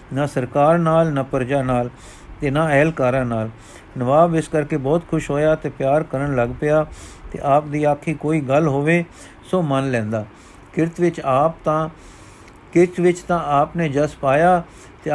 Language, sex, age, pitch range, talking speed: Punjabi, male, 50-69, 135-160 Hz, 170 wpm